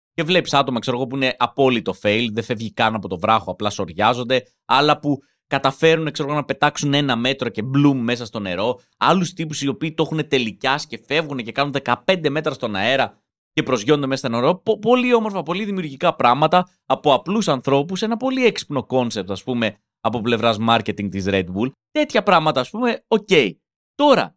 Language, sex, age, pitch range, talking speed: Greek, male, 30-49, 135-215 Hz, 190 wpm